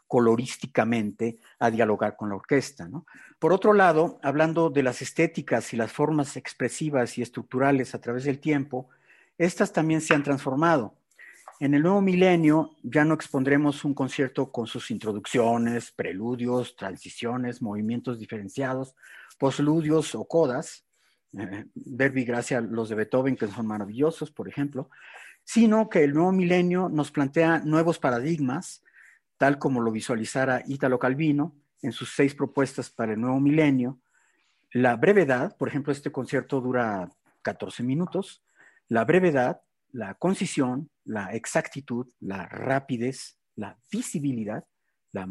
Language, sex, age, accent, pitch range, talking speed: Spanish, male, 50-69, Mexican, 120-150 Hz, 135 wpm